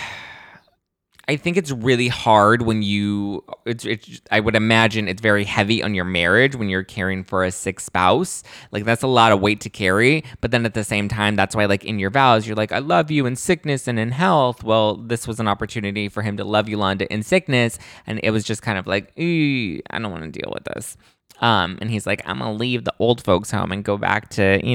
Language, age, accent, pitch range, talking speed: English, 20-39, American, 100-130 Hz, 235 wpm